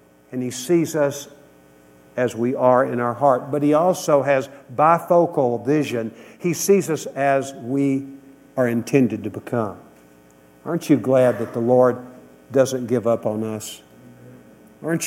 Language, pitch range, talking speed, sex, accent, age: English, 125-160 Hz, 145 wpm, male, American, 60-79